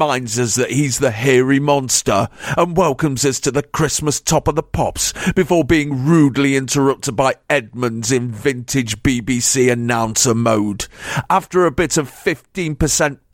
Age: 40-59